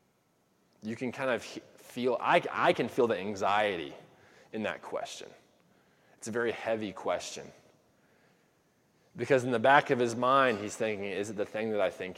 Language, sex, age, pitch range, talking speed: English, male, 20-39, 105-160 Hz, 170 wpm